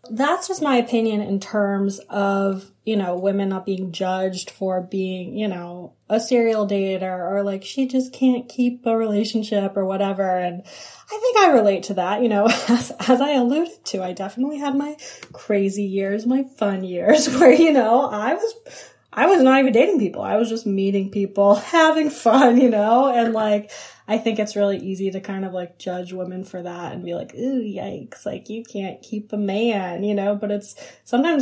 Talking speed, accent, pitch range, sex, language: 200 wpm, American, 190-240 Hz, female, English